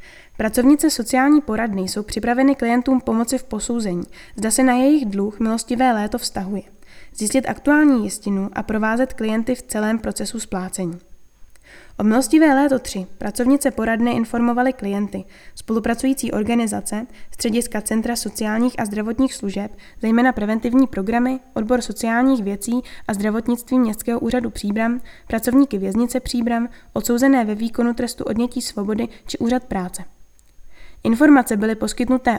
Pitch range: 215-255 Hz